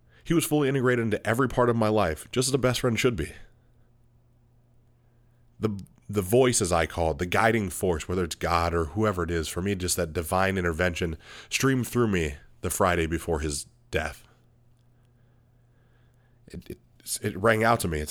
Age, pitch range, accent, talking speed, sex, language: 30-49, 90-120 Hz, American, 180 wpm, male, English